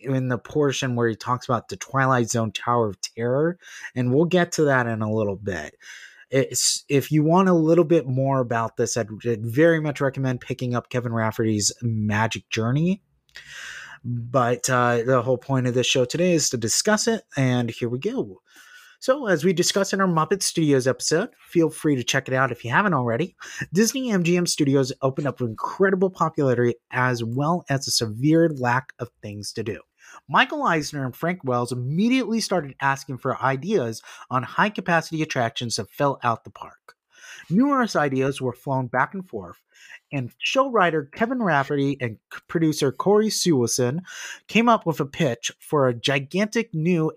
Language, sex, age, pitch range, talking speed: English, male, 30-49, 125-170 Hz, 175 wpm